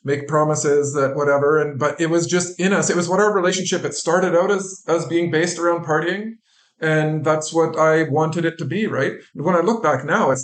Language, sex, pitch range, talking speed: English, male, 140-170 Hz, 230 wpm